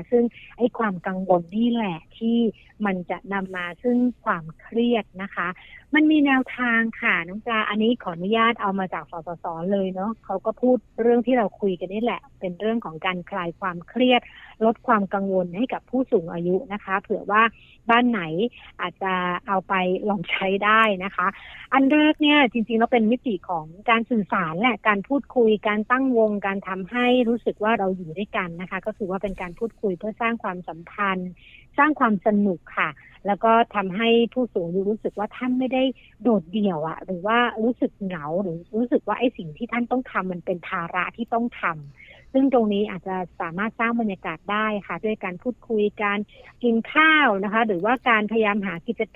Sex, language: female, Thai